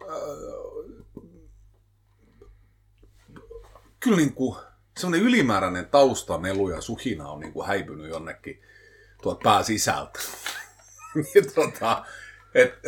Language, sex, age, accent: Finnish, male, 30-49, native